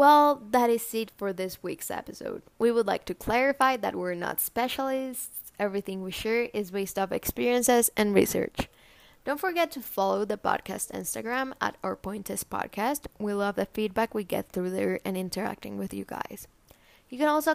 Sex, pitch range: female, 195-245 Hz